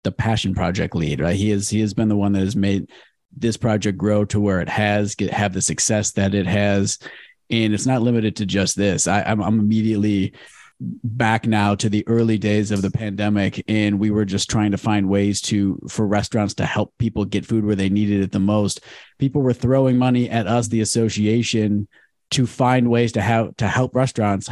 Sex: male